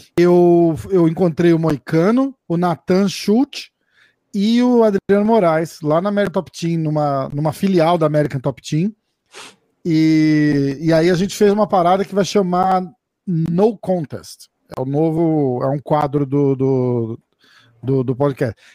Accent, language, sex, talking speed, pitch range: Brazilian, Portuguese, male, 155 wpm, 150-195 Hz